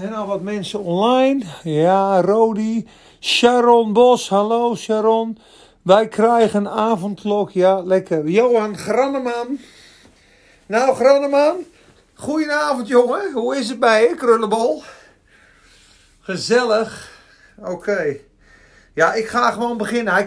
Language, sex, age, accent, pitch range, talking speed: Dutch, male, 50-69, Dutch, 185-245 Hz, 115 wpm